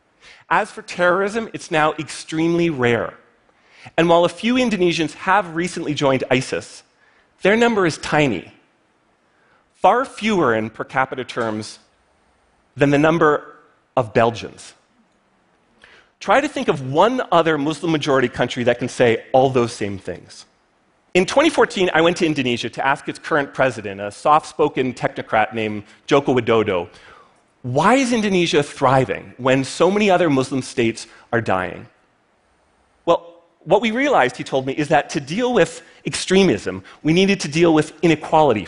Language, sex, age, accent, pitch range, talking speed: Russian, male, 40-59, American, 125-175 Hz, 145 wpm